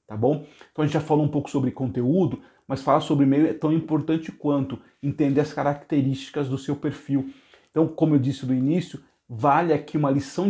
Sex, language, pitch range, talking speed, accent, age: male, Portuguese, 135-155 Hz, 200 wpm, Brazilian, 40-59